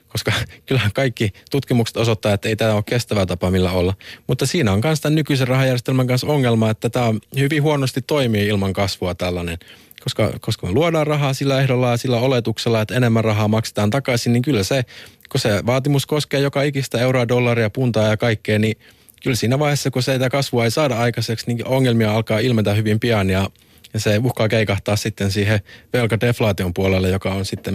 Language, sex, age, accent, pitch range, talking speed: Finnish, male, 20-39, native, 100-125 Hz, 185 wpm